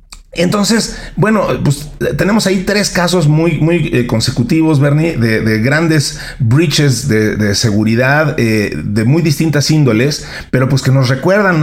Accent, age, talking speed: Mexican, 40-59, 145 wpm